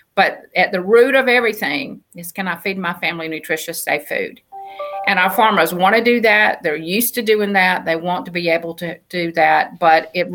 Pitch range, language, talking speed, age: 180-220 Hz, English, 215 wpm, 50-69